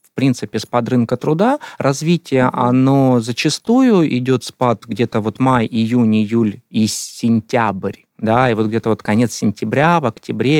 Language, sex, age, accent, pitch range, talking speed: Russian, male, 20-39, native, 115-150 Hz, 145 wpm